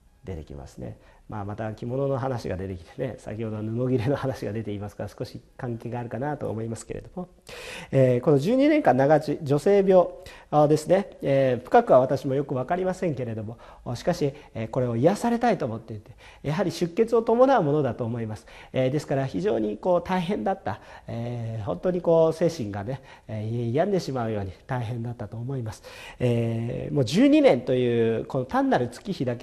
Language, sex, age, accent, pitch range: Japanese, male, 40-59, native, 115-185 Hz